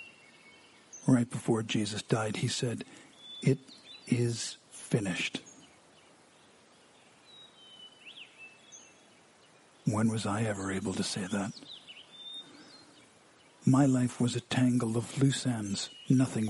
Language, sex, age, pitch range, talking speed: English, male, 50-69, 115-130 Hz, 95 wpm